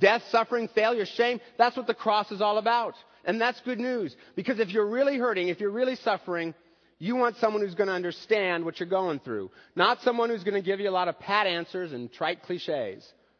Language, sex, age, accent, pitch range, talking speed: English, male, 40-59, American, 170-225 Hz, 225 wpm